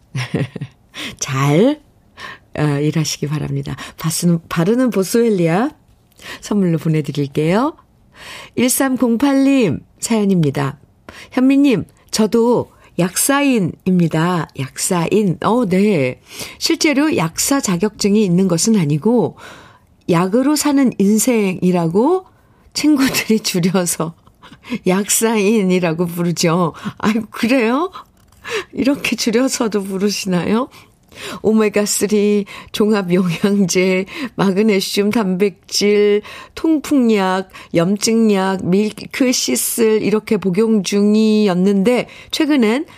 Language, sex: Korean, female